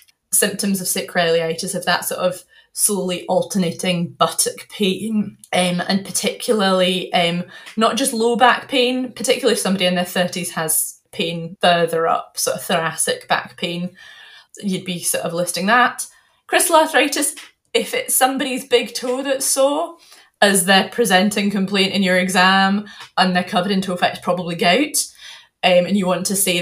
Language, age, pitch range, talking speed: English, 20-39, 180-235 Hz, 160 wpm